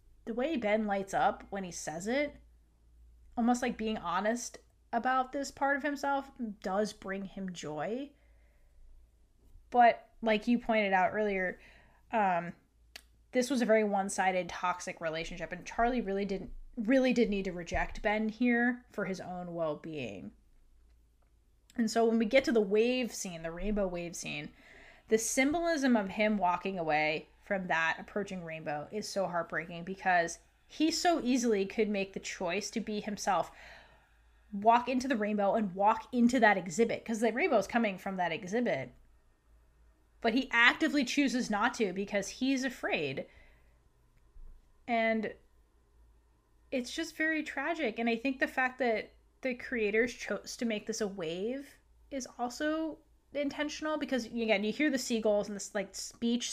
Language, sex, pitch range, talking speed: English, female, 180-245 Hz, 155 wpm